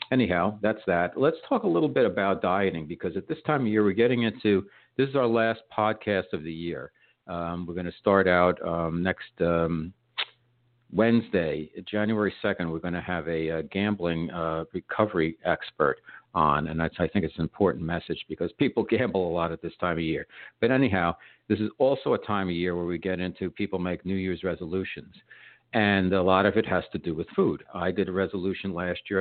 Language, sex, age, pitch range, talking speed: English, male, 60-79, 85-105 Hz, 210 wpm